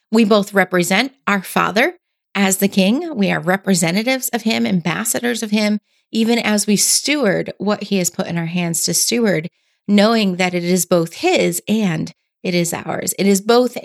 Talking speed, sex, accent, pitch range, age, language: 180 wpm, female, American, 185-230 Hz, 30-49, English